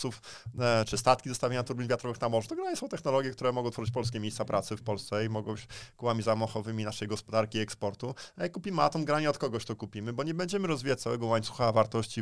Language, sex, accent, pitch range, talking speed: Polish, male, native, 105-125 Hz, 210 wpm